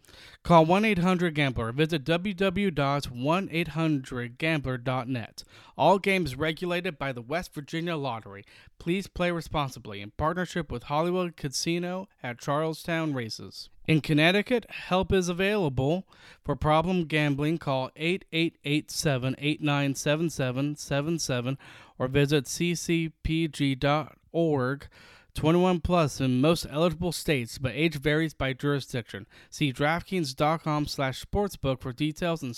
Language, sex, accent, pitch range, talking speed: English, male, American, 135-170 Hz, 100 wpm